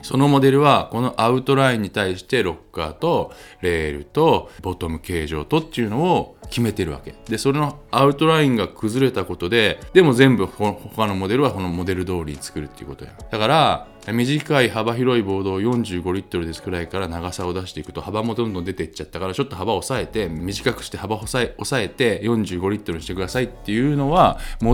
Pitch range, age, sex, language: 90-125 Hz, 20-39, male, Japanese